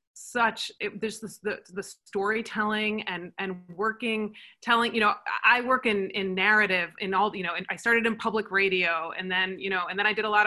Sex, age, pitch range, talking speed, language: female, 30-49, 185-230 Hz, 205 wpm, English